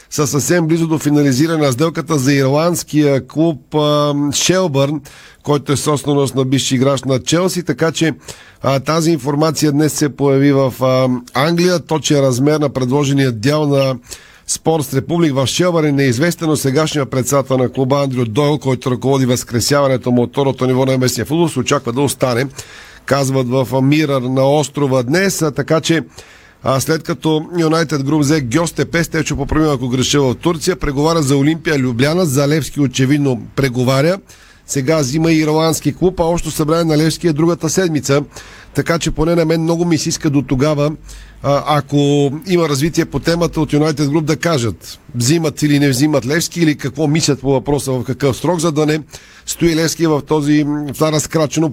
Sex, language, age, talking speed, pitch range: male, Bulgarian, 40-59, 170 wpm, 135-160 Hz